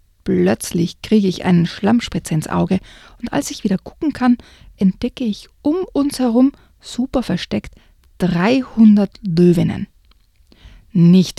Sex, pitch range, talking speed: female, 175-250 Hz, 120 wpm